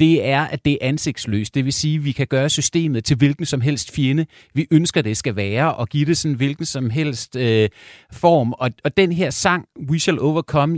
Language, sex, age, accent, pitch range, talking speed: Danish, male, 30-49, native, 125-160 Hz, 230 wpm